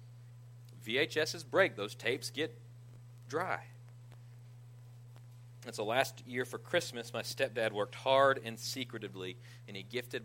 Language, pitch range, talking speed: English, 115-120 Hz, 130 wpm